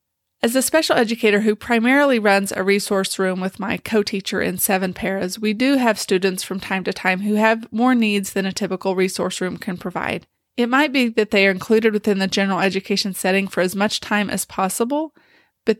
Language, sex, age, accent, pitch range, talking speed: English, female, 30-49, American, 190-225 Hz, 205 wpm